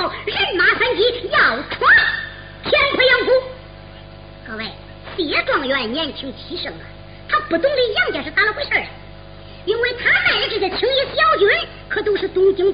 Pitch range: 310-445 Hz